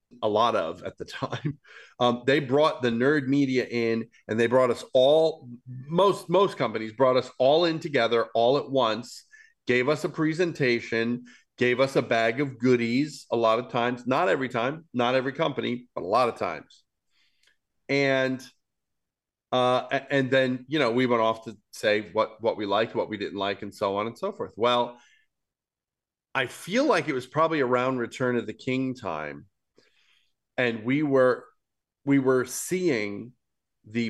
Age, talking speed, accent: 40-59, 175 wpm, American